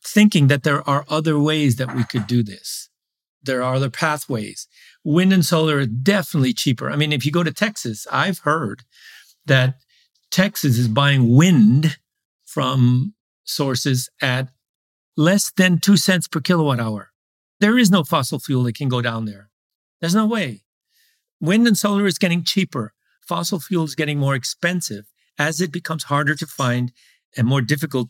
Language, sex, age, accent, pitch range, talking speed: English, male, 50-69, American, 130-190 Hz, 170 wpm